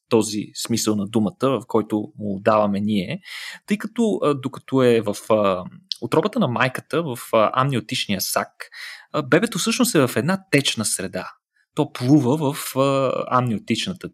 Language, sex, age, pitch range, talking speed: Bulgarian, male, 30-49, 115-180 Hz, 130 wpm